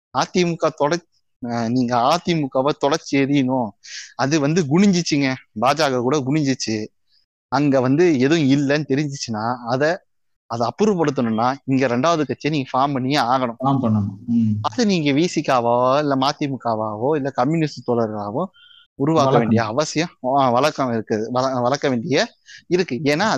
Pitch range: 125-160 Hz